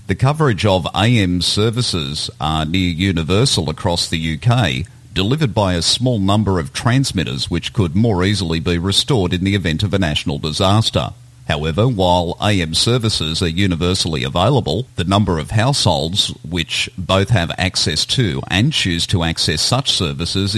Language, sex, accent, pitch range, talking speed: English, male, Australian, 85-110 Hz, 155 wpm